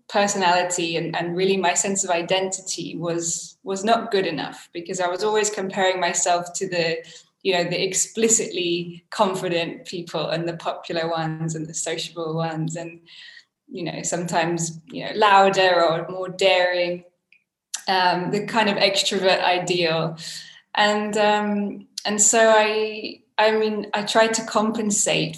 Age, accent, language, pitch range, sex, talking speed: 10-29, British, English, 175-210 Hz, female, 145 wpm